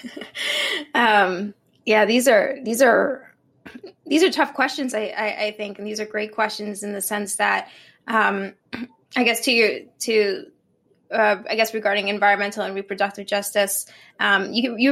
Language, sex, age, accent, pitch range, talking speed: English, female, 20-39, American, 195-220 Hz, 155 wpm